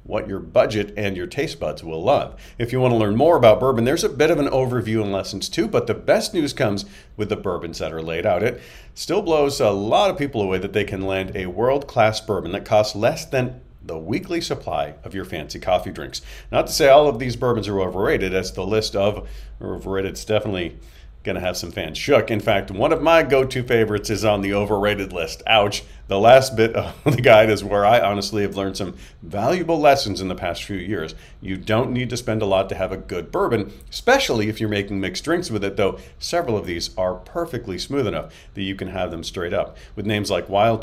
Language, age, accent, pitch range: English, 50-69, American, 95-120 Hz